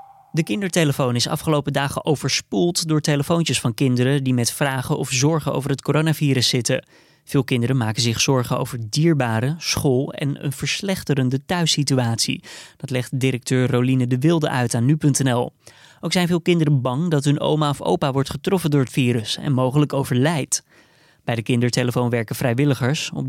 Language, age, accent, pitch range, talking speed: Dutch, 20-39, Dutch, 130-155 Hz, 165 wpm